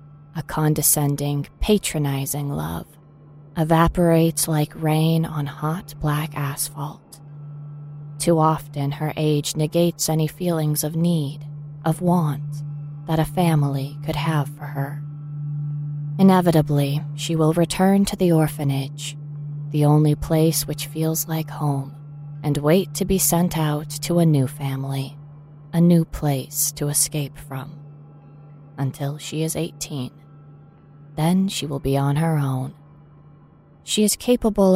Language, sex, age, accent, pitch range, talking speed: English, female, 20-39, American, 145-165 Hz, 125 wpm